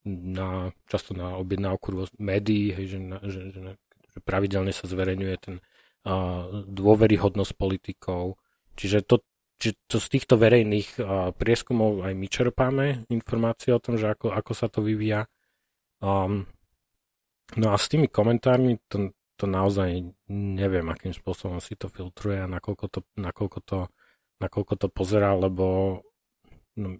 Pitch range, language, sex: 90-105 Hz, Slovak, male